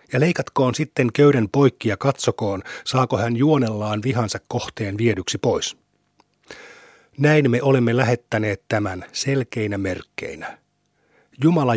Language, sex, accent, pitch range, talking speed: Finnish, male, native, 110-135 Hz, 110 wpm